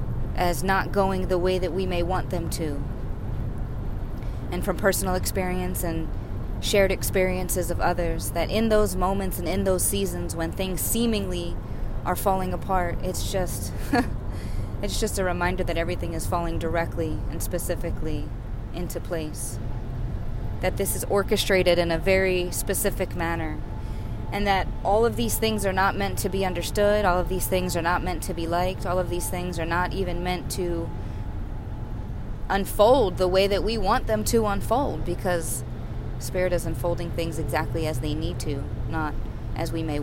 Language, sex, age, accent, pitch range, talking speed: English, female, 20-39, American, 105-170 Hz, 170 wpm